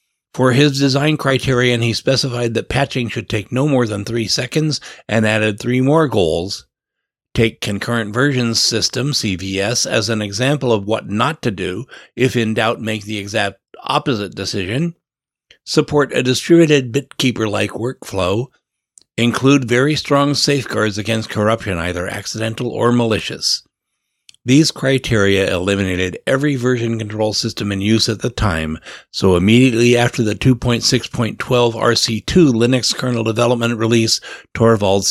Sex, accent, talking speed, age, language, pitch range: male, American, 135 wpm, 60-79, English, 110-130 Hz